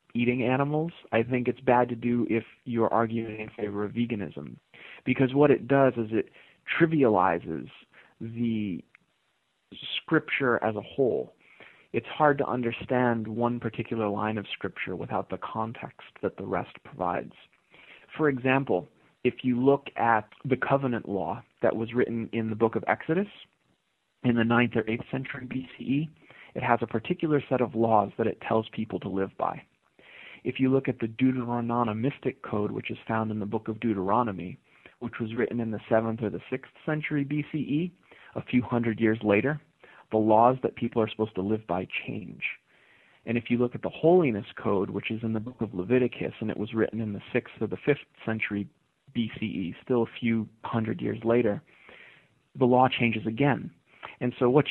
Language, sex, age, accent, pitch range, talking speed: English, male, 30-49, American, 110-130 Hz, 180 wpm